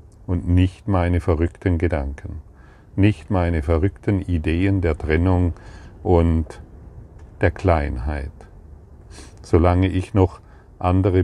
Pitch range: 80-95 Hz